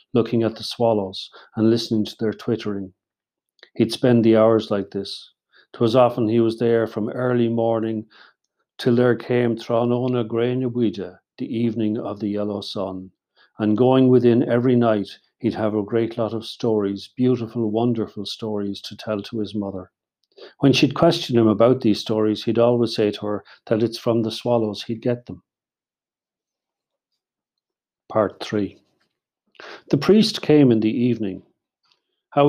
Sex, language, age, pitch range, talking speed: male, English, 40-59, 105-125 Hz, 155 wpm